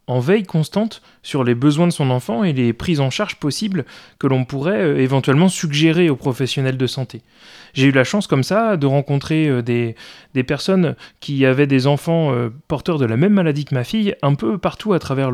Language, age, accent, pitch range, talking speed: French, 30-49, French, 130-170 Hz, 215 wpm